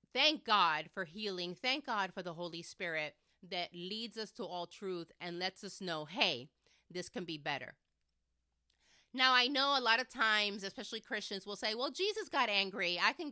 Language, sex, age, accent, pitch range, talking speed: English, female, 30-49, American, 180-230 Hz, 190 wpm